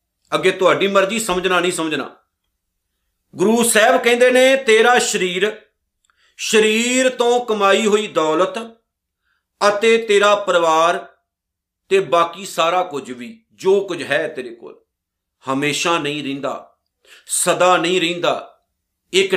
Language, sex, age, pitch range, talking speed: Punjabi, male, 50-69, 165-210 Hz, 115 wpm